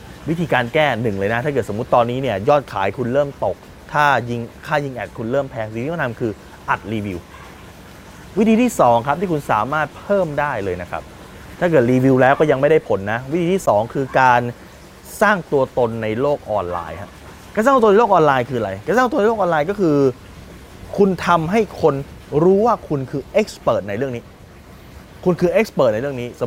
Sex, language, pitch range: male, Thai, 120-180 Hz